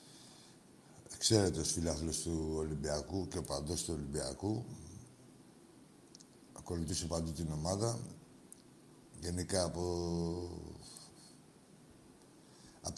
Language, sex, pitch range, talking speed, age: Greek, male, 80-95 Hz, 80 wpm, 60-79